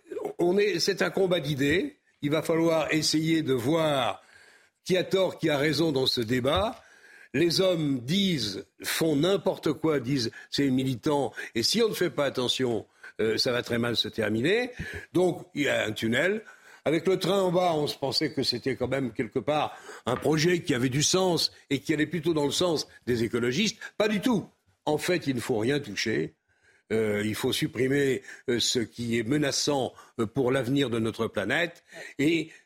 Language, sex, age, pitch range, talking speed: French, male, 60-79, 130-180 Hz, 195 wpm